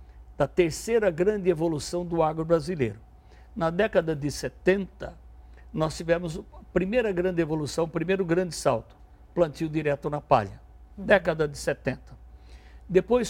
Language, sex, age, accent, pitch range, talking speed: Portuguese, male, 60-79, Brazilian, 140-180 Hz, 125 wpm